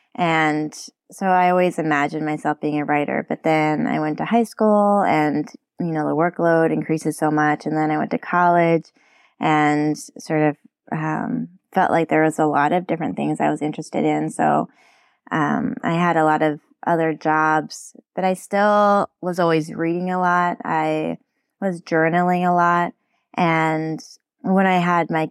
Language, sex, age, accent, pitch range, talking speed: English, female, 20-39, American, 155-180 Hz, 175 wpm